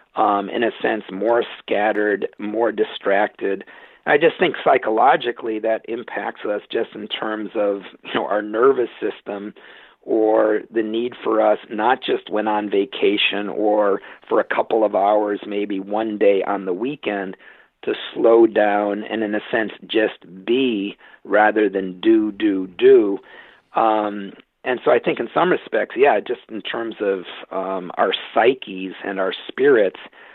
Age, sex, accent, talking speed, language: 50-69, male, American, 160 wpm, English